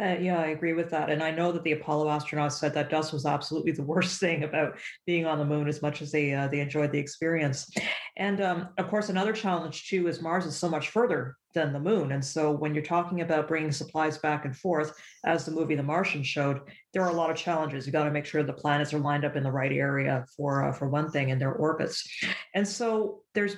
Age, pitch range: 40-59, 150-175 Hz